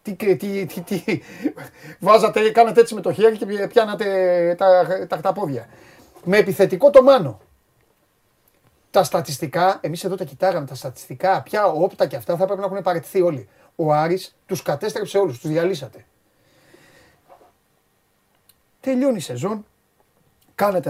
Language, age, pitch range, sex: Greek, 40-59, 165-220 Hz, male